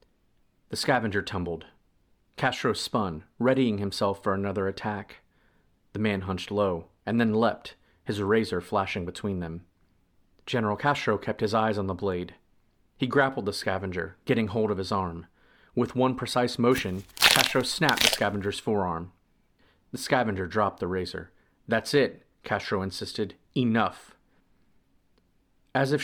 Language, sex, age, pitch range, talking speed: English, male, 30-49, 90-115 Hz, 140 wpm